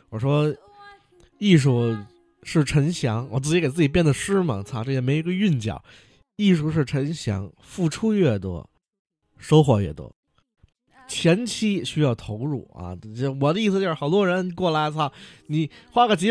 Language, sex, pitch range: Chinese, male, 120-180 Hz